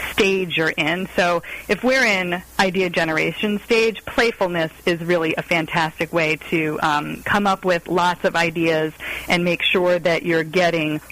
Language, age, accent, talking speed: English, 30-49, American, 160 wpm